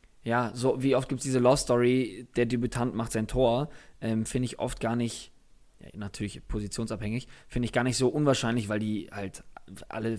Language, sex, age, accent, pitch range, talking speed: German, male, 20-39, German, 115-140 Hz, 195 wpm